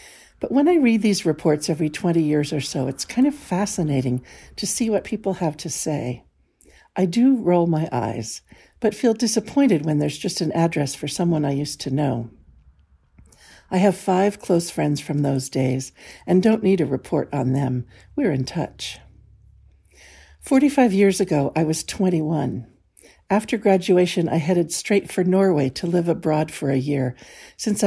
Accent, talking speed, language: American, 170 wpm, English